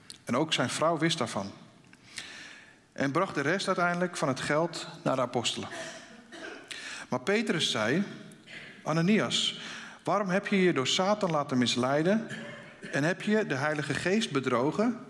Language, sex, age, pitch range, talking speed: Dutch, male, 50-69, 140-195 Hz, 145 wpm